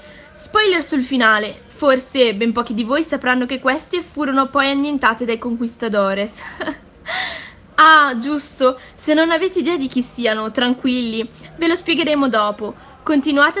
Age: 10-29